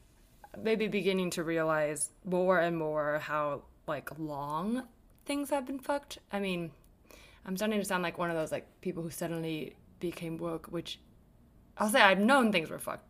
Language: English